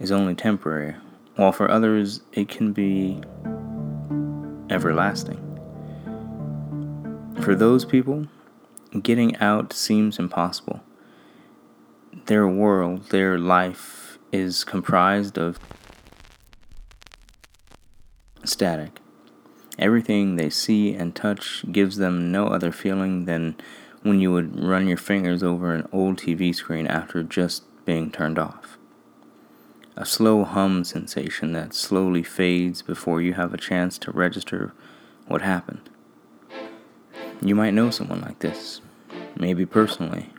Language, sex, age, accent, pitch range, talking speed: English, male, 20-39, American, 85-100 Hz, 115 wpm